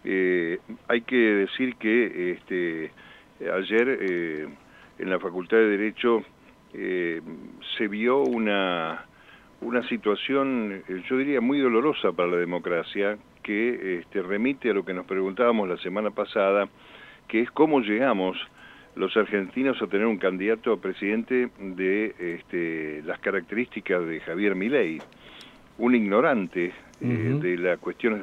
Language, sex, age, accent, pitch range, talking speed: Spanish, male, 50-69, Argentinian, 95-115 Hz, 125 wpm